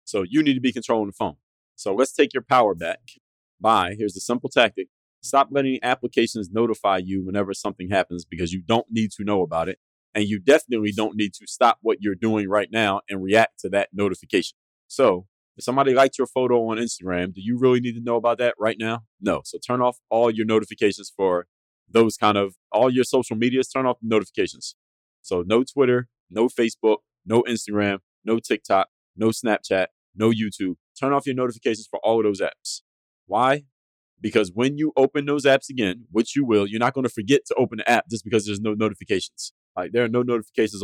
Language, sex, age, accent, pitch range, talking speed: English, male, 30-49, American, 100-120 Hz, 205 wpm